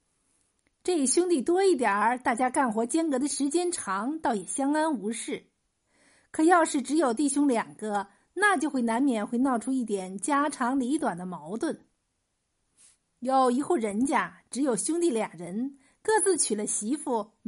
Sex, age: female, 50-69